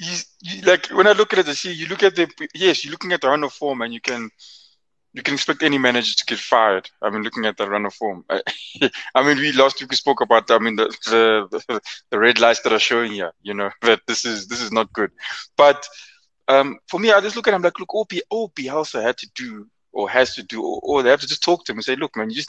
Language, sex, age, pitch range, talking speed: English, male, 20-39, 135-190 Hz, 285 wpm